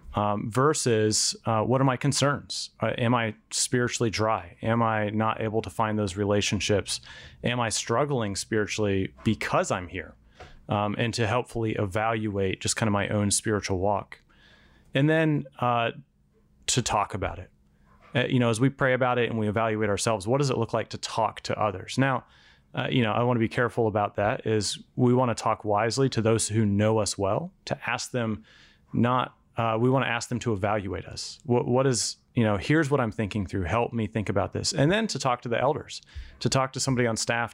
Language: English